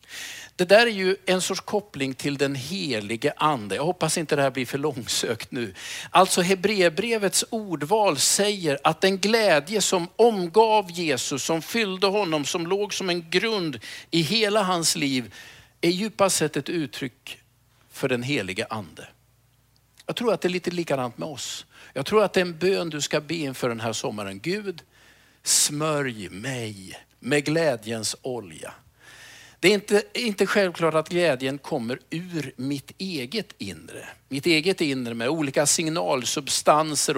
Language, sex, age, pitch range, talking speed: Swedish, male, 50-69, 140-190 Hz, 160 wpm